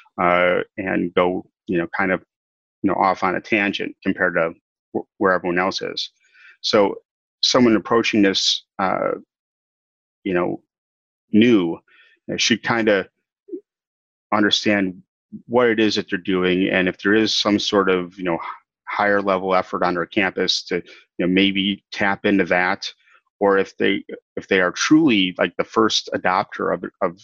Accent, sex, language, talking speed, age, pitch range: American, male, English, 155 wpm, 30-49, 95-105 Hz